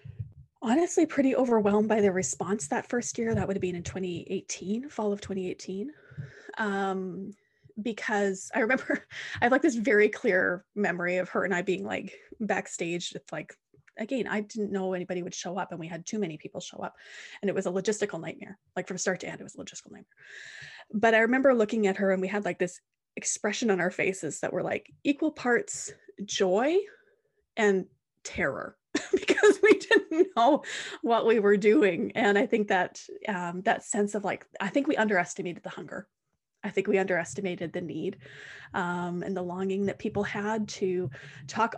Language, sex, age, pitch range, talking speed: English, female, 20-39, 185-225 Hz, 190 wpm